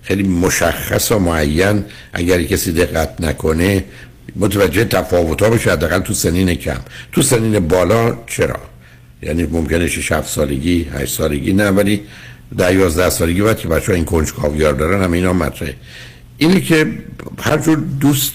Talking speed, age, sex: 135 wpm, 60-79, male